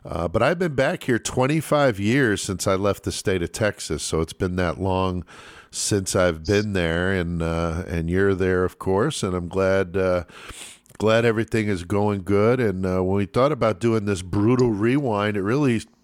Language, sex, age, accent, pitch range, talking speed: English, male, 50-69, American, 95-110 Hz, 195 wpm